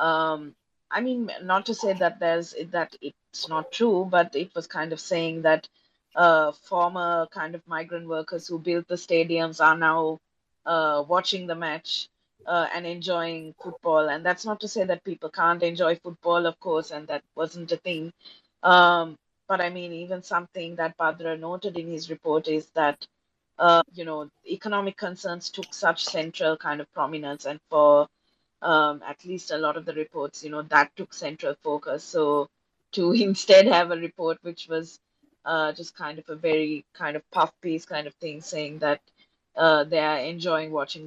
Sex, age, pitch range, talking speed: female, 30-49, 155-175 Hz, 185 wpm